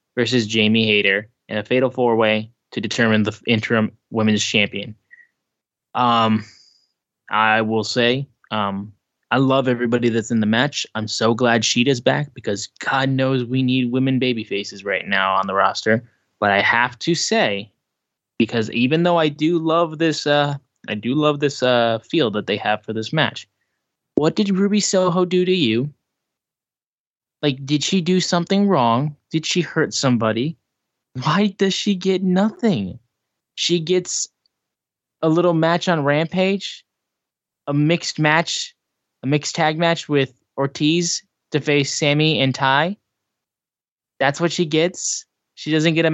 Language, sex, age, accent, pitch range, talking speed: English, male, 20-39, American, 120-170 Hz, 155 wpm